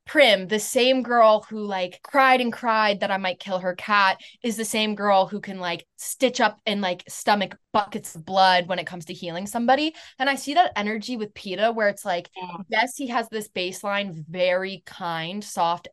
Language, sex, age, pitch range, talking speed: English, female, 20-39, 180-235 Hz, 205 wpm